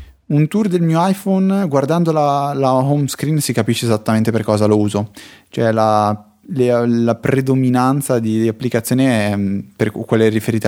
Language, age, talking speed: Italian, 20-39, 165 wpm